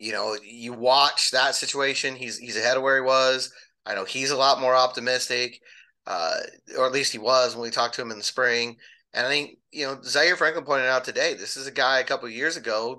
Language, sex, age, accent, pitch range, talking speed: English, male, 30-49, American, 120-150 Hz, 245 wpm